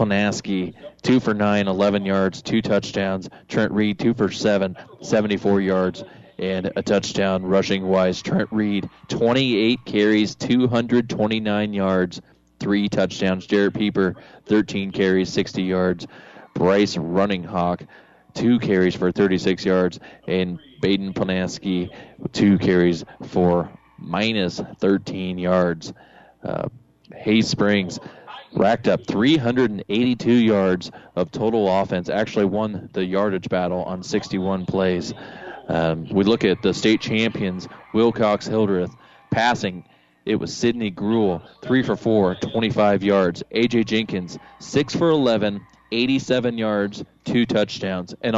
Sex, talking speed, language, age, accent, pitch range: male, 120 wpm, English, 20-39, American, 95-110 Hz